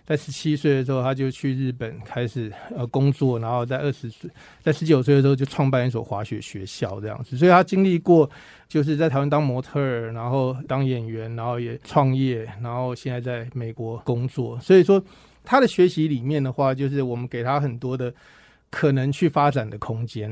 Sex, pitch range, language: male, 120-150 Hz, Chinese